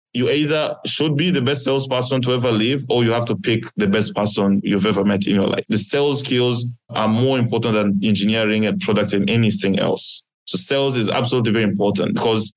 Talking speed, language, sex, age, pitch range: 210 wpm, English, male, 20-39, 110-135 Hz